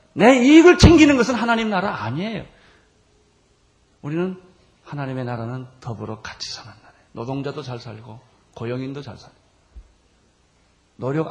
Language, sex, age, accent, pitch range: Korean, male, 40-59, native, 105-155 Hz